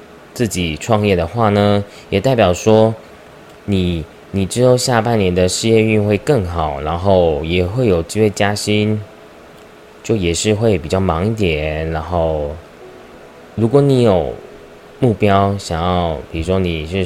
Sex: male